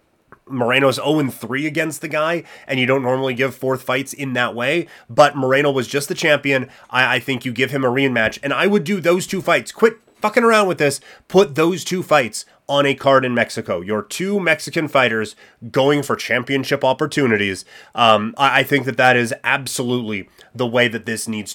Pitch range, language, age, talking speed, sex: 120-160 Hz, English, 30-49, 200 wpm, male